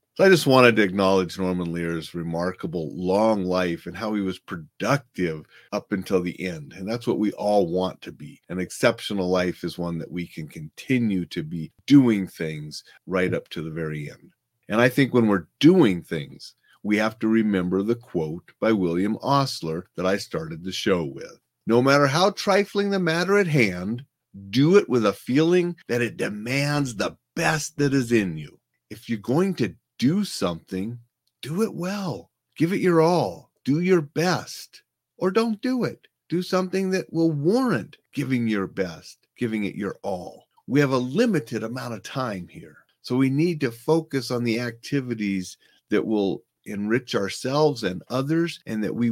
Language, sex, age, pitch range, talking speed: English, male, 40-59, 95-145 Hz, 180 wpm